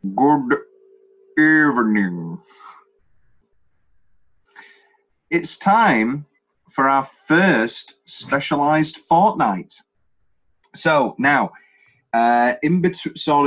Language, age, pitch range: English, 30-49, 100-150 Hz